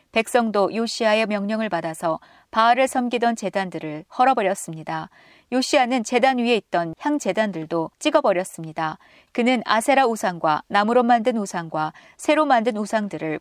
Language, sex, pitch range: Korean, female, 175-255 Hz